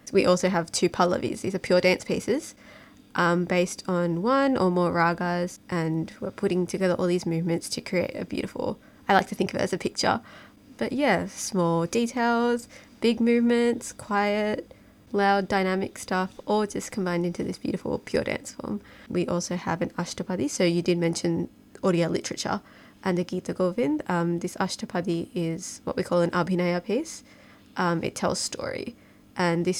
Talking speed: 175 wpm